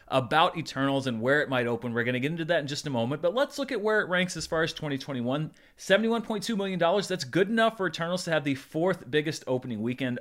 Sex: male